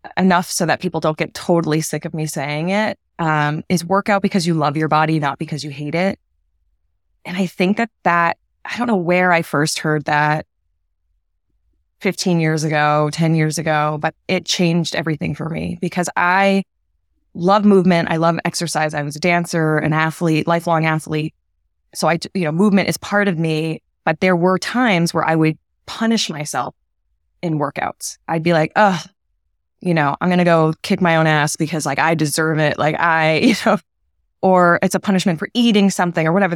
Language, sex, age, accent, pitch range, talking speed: English, female, 20-39, American, 150-180 Hz, 190 wpm